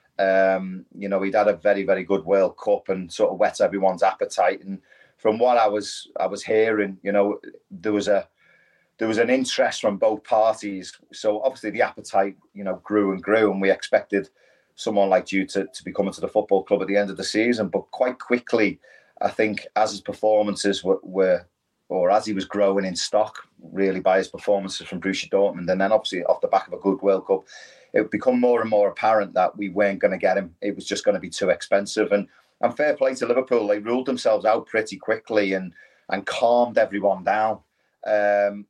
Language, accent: English, British